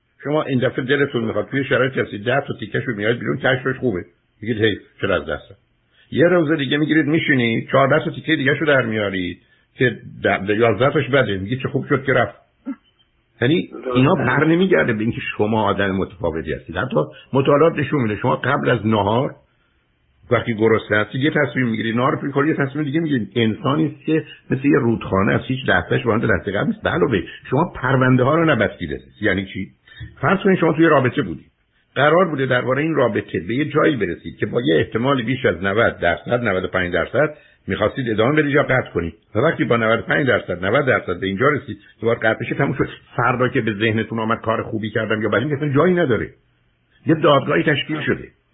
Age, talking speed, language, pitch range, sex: 60-79, 195 wpm, Persian, 110-150 Hz, male